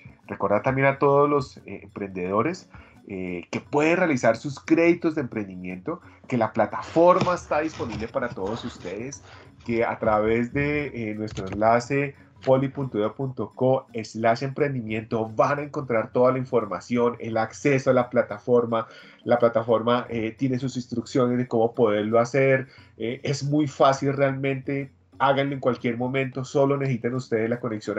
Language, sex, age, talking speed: Spanish, male, 30-49, 145 wpm